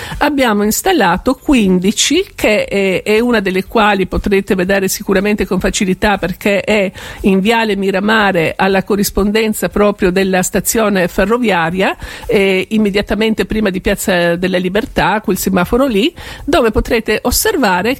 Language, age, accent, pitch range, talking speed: Italian, 50-69, native, 190-220 Hz, 125 wpm